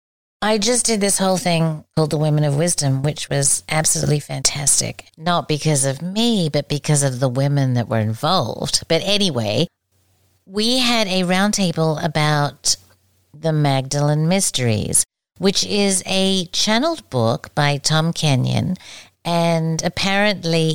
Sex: female